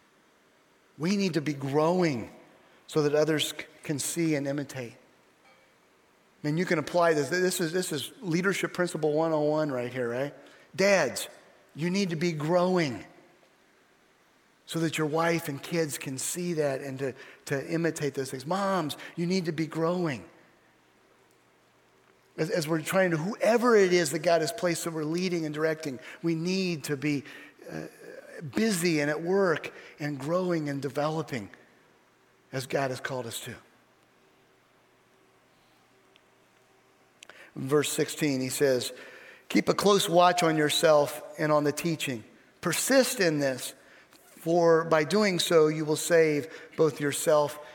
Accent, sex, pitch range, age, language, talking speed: American, male, 145-180 Hz, 40-59, English, 145 wpm